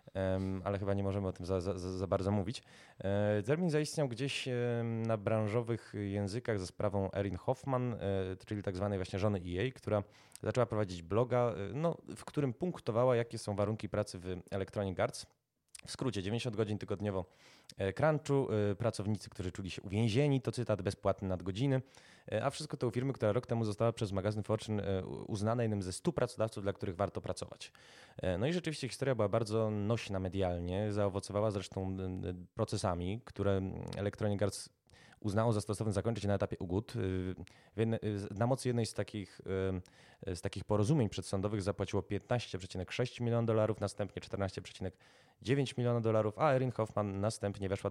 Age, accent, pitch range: 20-39, native, 100-120 Hz